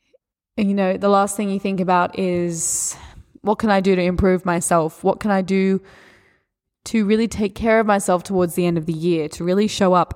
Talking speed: 215 wpm